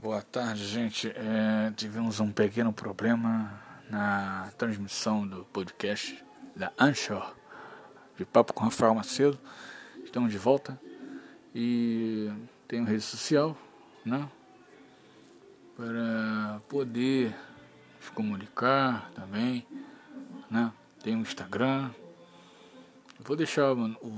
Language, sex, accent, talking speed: Portuguese, male, Brazilian, 100 wpm